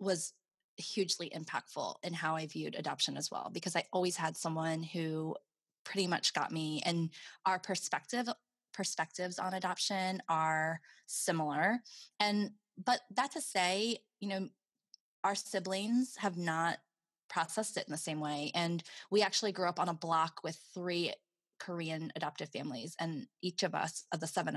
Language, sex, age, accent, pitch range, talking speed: English, female, 20-39, American, 160-190 Hz, 160 wpm